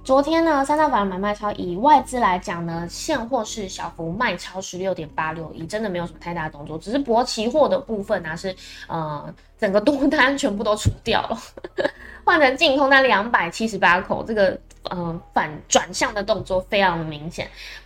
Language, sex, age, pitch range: Chinese, female, 20-39, 175-235 Hz